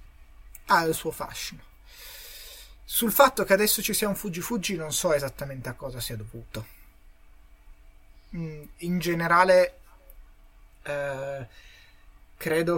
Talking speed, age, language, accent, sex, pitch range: 110 wpm, 30-49, Italian, native, male, 130-175 Hz